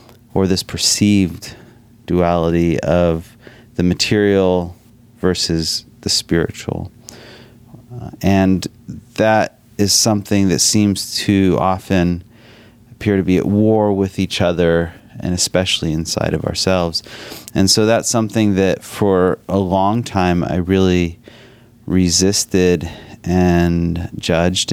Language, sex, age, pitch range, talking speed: English, male, 30-49, 85-115 Hz, 110 wpm